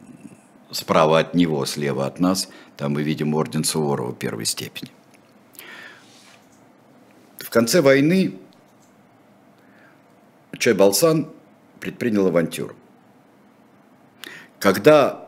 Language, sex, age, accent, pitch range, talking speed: Russian, male, 60-79, native, 75-105 Hz, 80 wpm